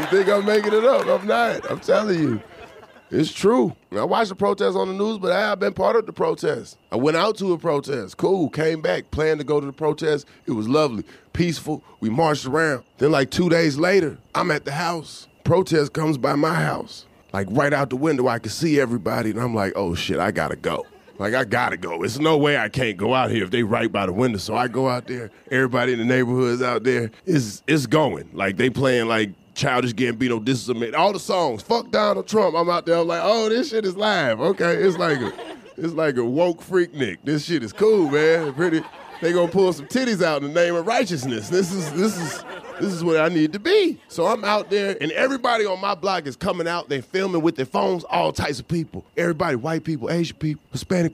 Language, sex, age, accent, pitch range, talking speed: English, male, 30-49, American, 130-185 Hz, 240 wpm